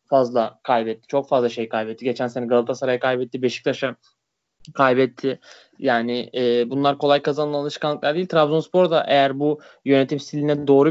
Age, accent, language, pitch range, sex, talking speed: 20-39, native, Turkish, 130-150 Hz, male, 145 wpm